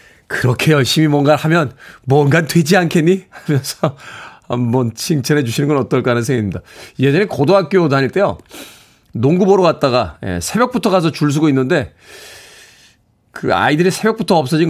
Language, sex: Korean, male